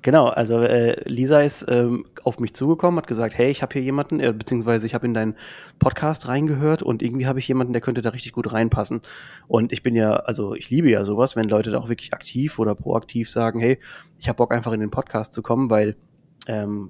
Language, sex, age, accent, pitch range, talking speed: German, male, 30-49, German, 110-130 Hz, 230 wpm